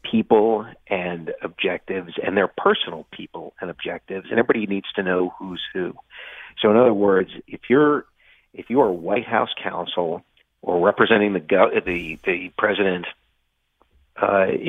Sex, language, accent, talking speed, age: male, English, American, 145 wpm, 50-69